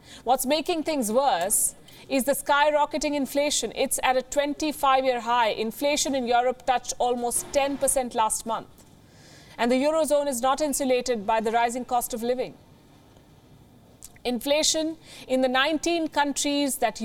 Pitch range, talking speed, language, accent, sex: 225-280 Hz, 140 wpm, English, Indian, female